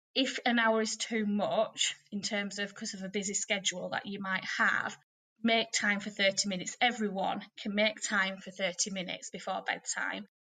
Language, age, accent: English, 20-39, British